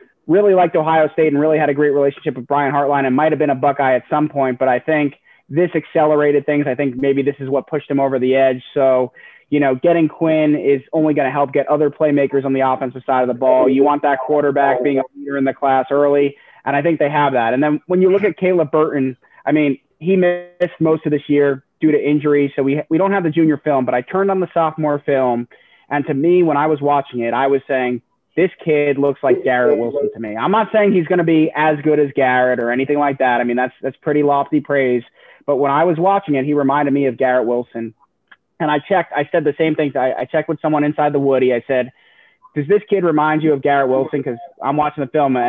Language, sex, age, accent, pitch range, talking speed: English, male, 20-39, American, 135-155 Hz, 255 wpm